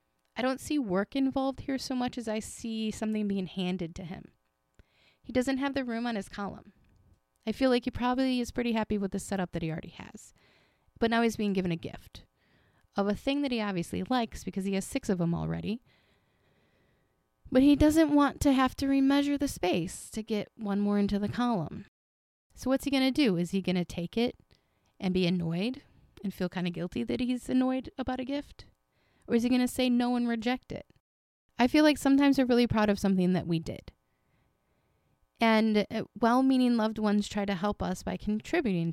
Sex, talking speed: female, 210 wpm